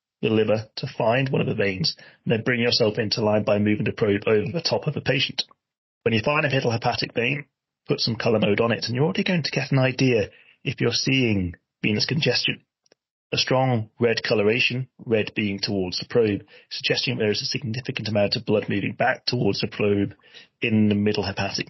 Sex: male